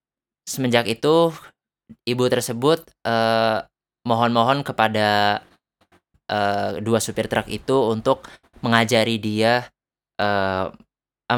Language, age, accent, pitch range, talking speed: Indonesian, 20-39, native, 110-135 Hz, 85 wpm